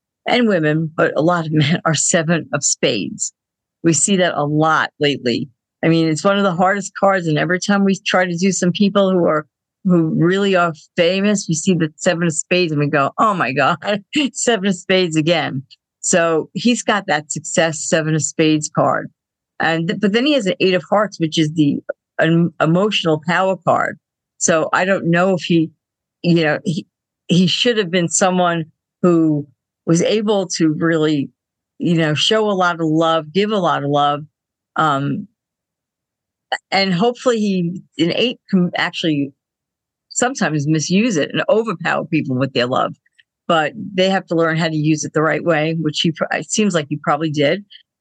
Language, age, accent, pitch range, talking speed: English, 50-69, American, 155-190 Hz, 185 wpm